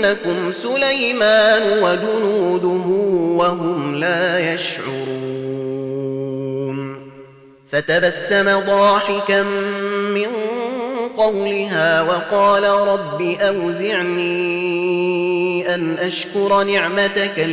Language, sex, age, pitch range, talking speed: Arabic, male, 30-49, 165-220 Hz, 50 wpm